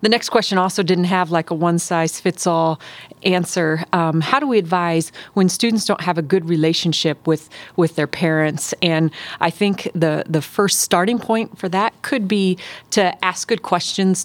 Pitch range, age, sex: 160-190 Hz, 30-49, female